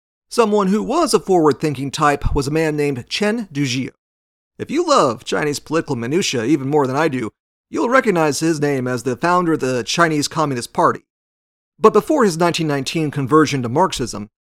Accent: American